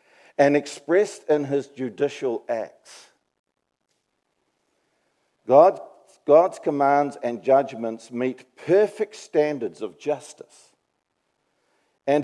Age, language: 50-69, English